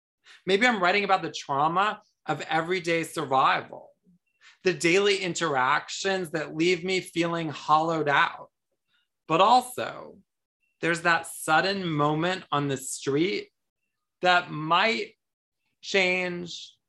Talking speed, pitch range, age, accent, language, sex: 105 wpm, 160-205 Hz, 30-49, American, English, male